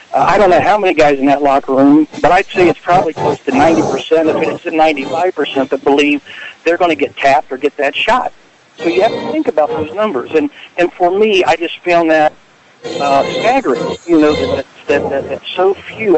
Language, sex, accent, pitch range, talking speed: English, male, American, 145-185 Hz, 230 wpm